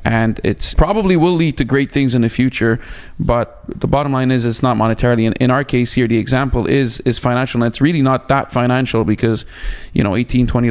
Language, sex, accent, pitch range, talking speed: English, male, Canadian, 115-135 Hz, 220 wpm